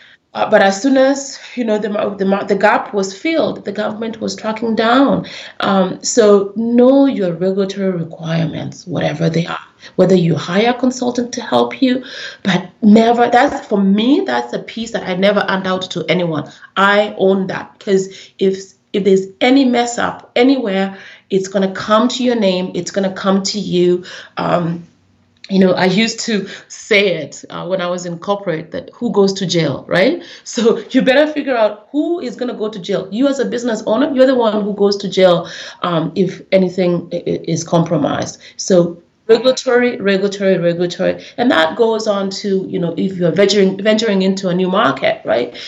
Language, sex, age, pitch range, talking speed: English, female, 30-49, 185-225 Hz, 190 wpm